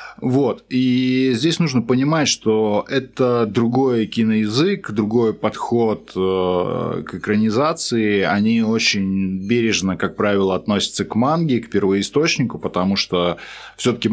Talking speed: 110 wpm